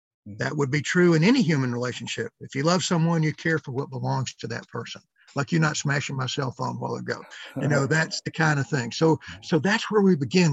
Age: 50-69